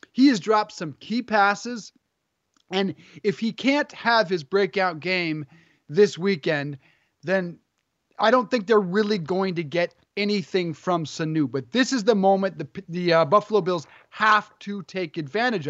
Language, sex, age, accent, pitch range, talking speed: English, male, 30-49, American, 170-215 Hz, 160 wpm